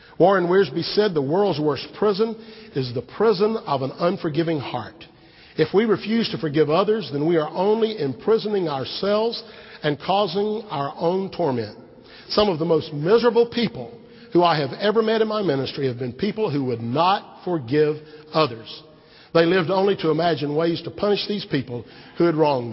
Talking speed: 175 wpm